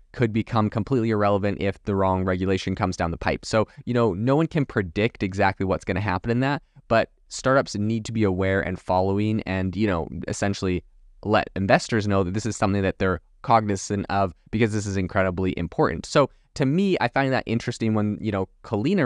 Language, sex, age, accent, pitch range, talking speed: English, male, 20-39, American, 95-115 Hz, 205 wpm